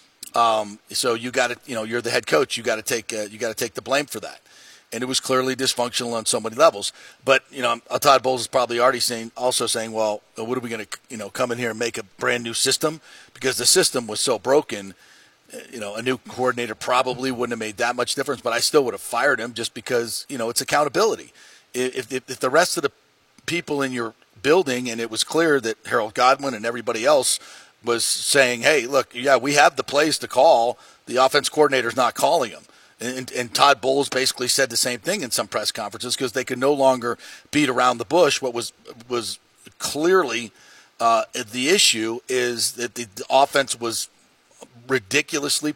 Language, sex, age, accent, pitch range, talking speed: English, male, 40-59, American, 115-130 Hz, 220 wpm